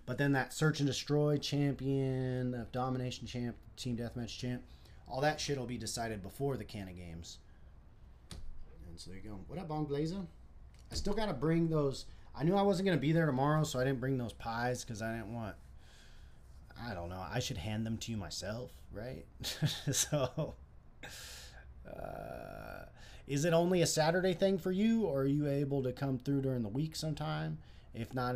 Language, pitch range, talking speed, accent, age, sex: English, 80-135 Hz, 195 wpm, American, 30-49, male